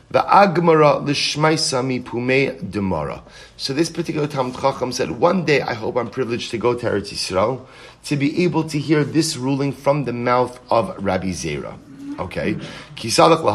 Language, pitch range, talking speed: English, 120-155 Hz, 155 wpm